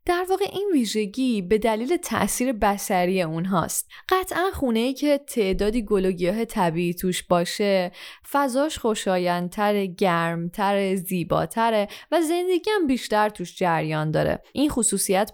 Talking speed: 120 wpm